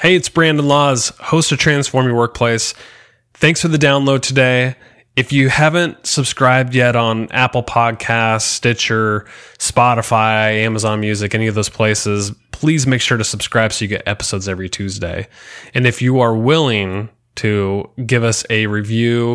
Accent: American